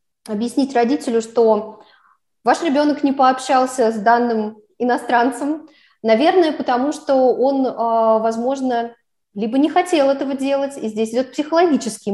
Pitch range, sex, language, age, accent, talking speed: 225-270 Hz, female, Russian, 20-39, native, 120 wpm